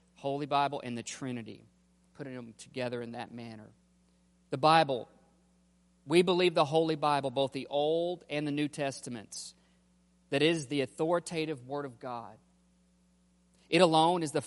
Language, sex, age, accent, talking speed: English, male, 40-59, American, 150 wpm